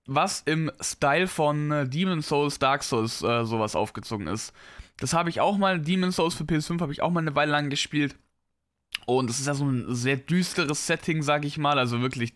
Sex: male